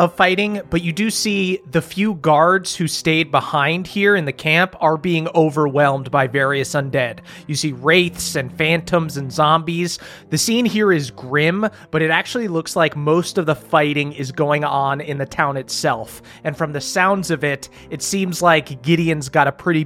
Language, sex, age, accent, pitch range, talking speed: English, male, 30-49, American, 145-175 Hz, 190 wpm